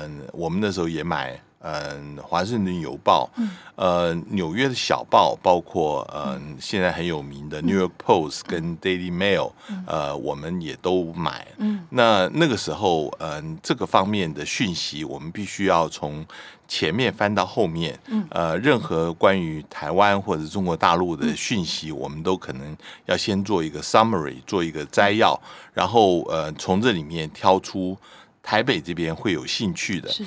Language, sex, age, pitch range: Chinese, male, 60-79, 80-120 Hz